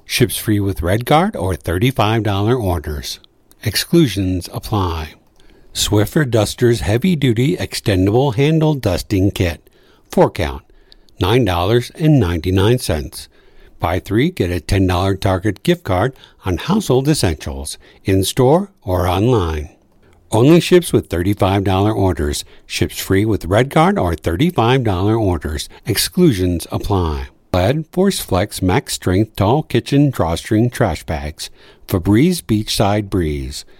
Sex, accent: male, American